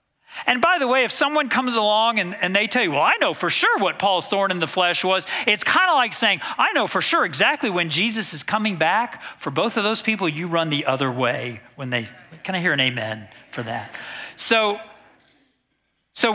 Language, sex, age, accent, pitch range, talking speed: English, male, 40-59, American, 175-265 Hz, 225 wpm